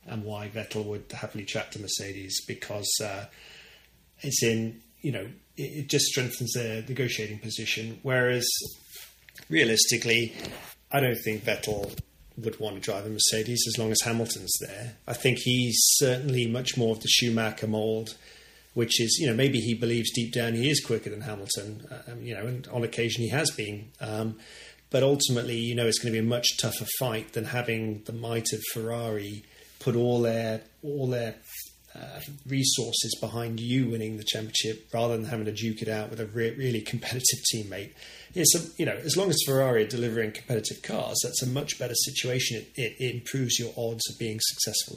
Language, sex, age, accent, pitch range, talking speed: English, male, 30-49, British, 110-125 Hz, 190 wpm